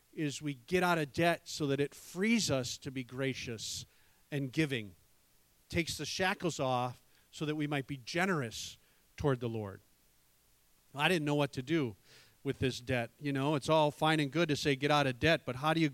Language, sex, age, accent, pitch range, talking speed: English, male, 40-59, American, 140-185 Hz, 205 wpm